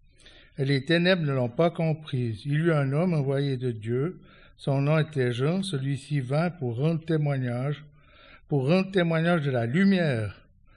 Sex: male